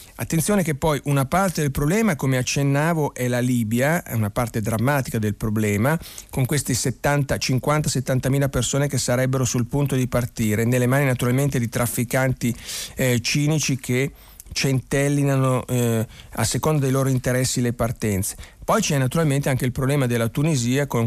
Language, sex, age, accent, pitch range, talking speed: Italian, male, 40-59, native, 125-155 Hz, 155 wpm